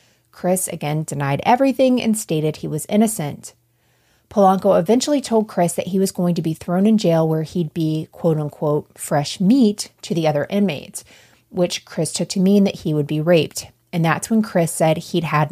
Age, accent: 30-49, American